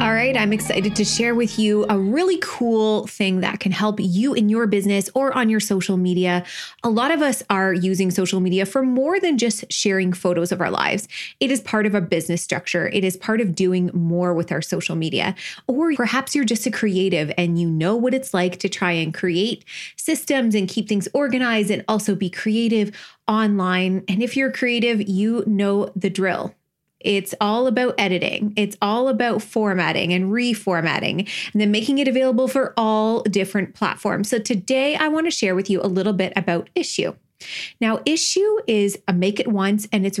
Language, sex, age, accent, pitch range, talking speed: English, female, 20-39, American, 185-235 Hz, 200 wpm